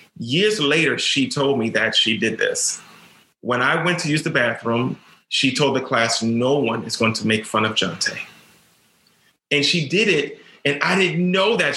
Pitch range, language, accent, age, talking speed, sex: 135-180 Hz, English, American, 30-49, 195 wpm, male